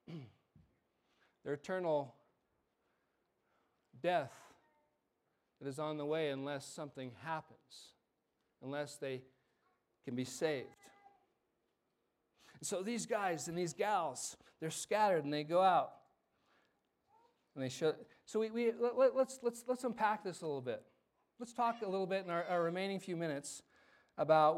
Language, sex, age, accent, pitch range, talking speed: English, male, 40-59, American, 155-225 Hz, 140 wpm